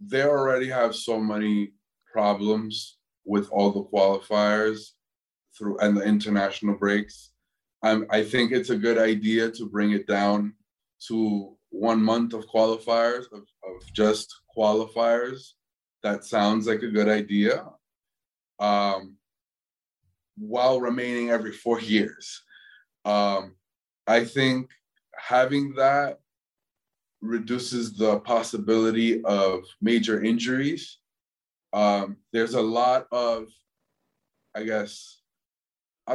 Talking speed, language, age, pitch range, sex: 110 wpm, English, 20-39, 105-125 Hz, male